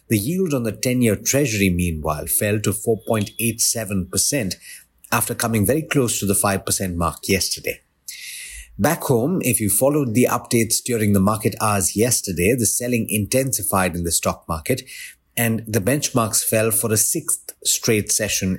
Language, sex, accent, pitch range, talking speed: English, male, Indian, 100-125 Hz, 150 wpm